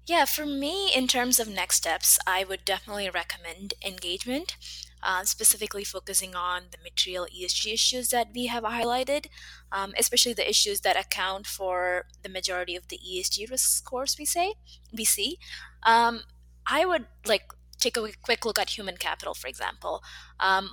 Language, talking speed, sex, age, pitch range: English, 170 wpm, female, 20-39, 175-235 Hz